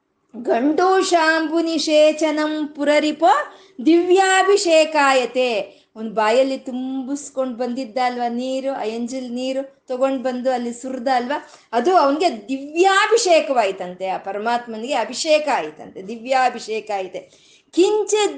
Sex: female